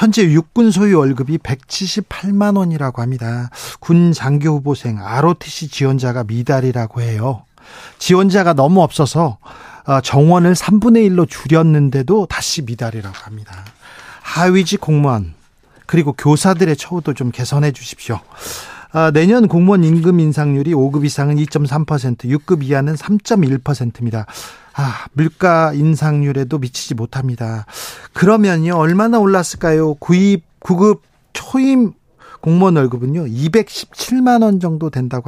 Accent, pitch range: native, 130-175 Hz